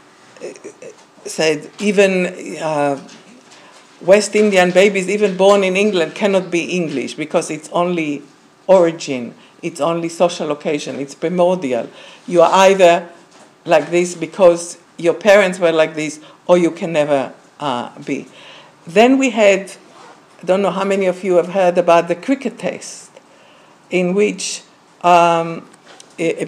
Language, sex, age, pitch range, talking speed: English, female, 50-69, 170-210 Hz, 135 wpm